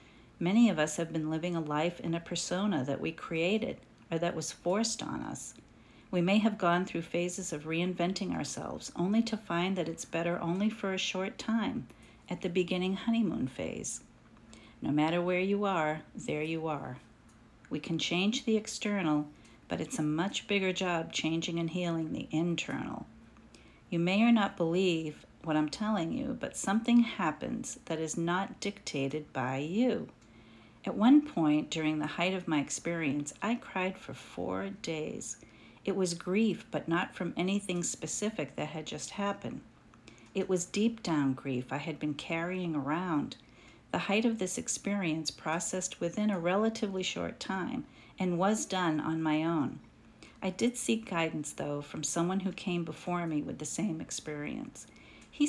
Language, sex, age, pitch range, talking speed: English, female, 50-69, 155-200 Hz, 170 wpm